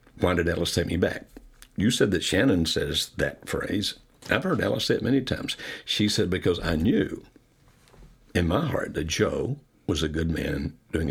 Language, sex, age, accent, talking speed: English, male, 60-79, American, 190 wpm